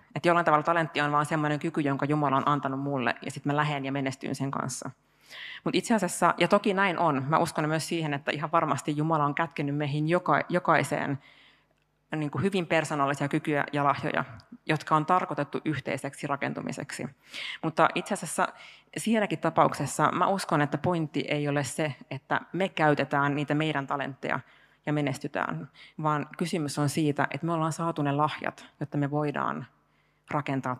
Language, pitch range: Finnish, 140-160 Hz